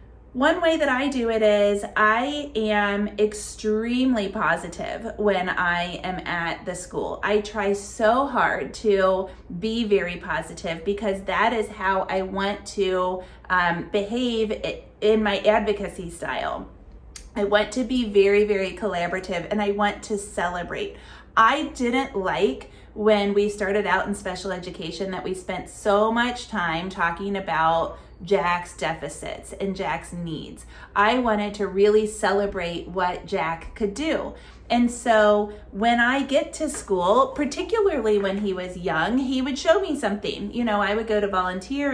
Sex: female